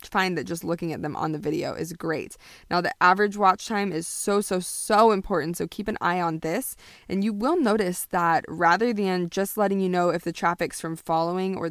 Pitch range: 175-215 Hz